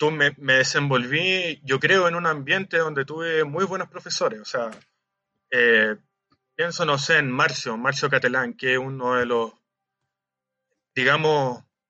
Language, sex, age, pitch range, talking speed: Spanish, male, 30-49, 130-170 Hz, 145 wpm